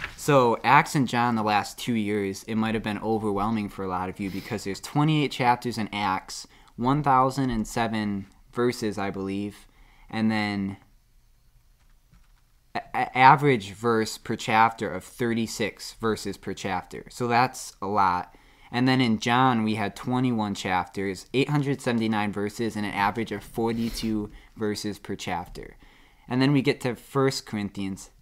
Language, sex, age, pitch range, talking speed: English, male, 20-39, 105-125 Hz, 145 wpm